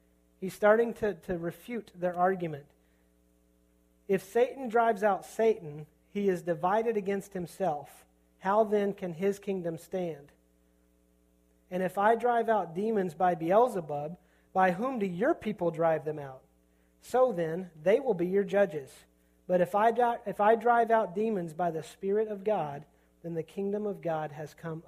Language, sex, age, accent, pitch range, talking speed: English, male, 40-59, American, 165-215 Hz, 155 wpm